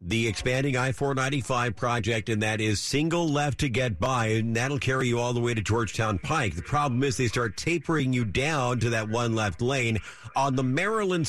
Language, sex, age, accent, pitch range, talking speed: English, male, 50-69, American, 115-145 Hz, 200 wpm